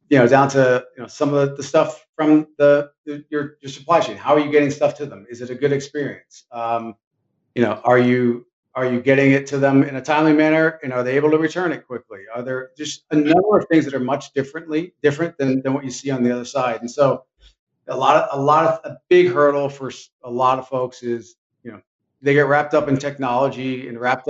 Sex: male